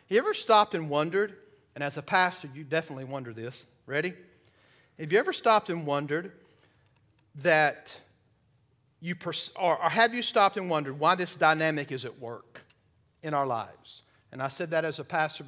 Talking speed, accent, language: 180 wpm, American, English